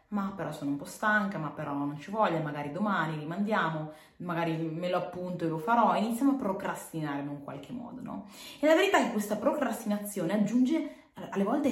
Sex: female